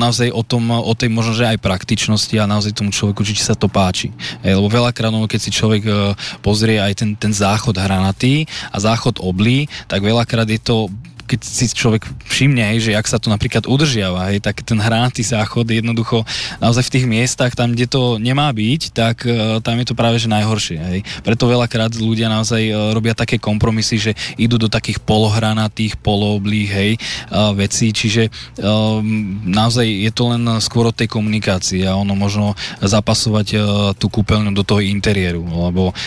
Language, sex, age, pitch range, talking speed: Slovak, male, 20-39, 100-115 Hz, 165 wpm